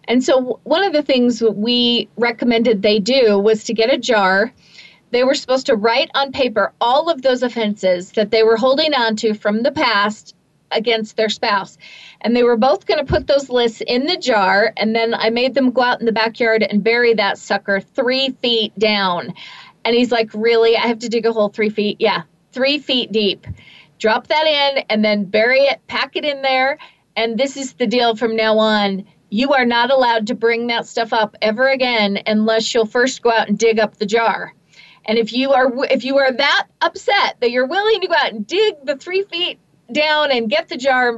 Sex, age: female, 40-59